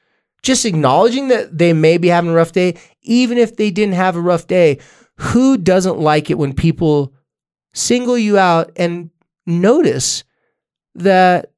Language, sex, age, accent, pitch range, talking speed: English, male, 20-39, American, 130-185 Hz, 155 wpm